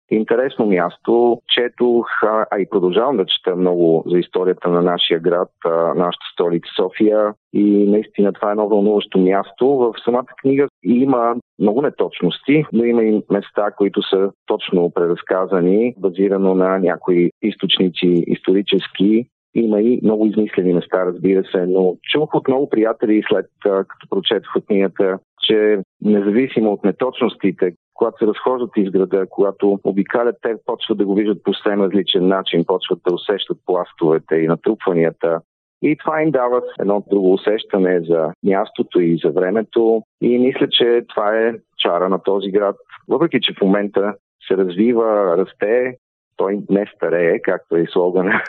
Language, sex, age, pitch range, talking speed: Bulgarian, male, 40-59, 95-110 Hz, 150 wpm